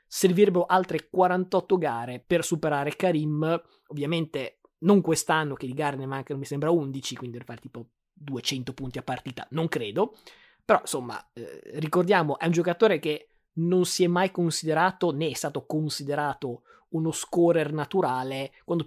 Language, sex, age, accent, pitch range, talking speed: Italian, male, 20-39, native, 140-175 Hz, 155 wpm